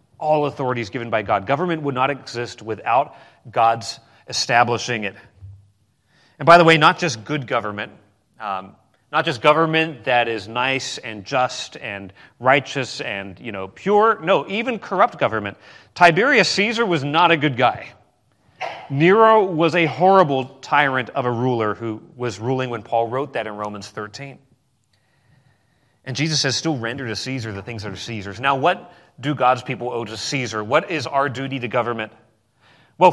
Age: 30-49